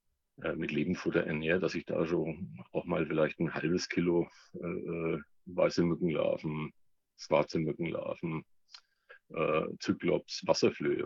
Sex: male